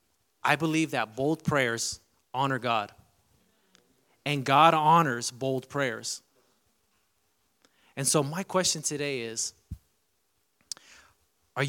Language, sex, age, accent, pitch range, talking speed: English, male, 30-49, American, 115-145 Hz, 100 wpm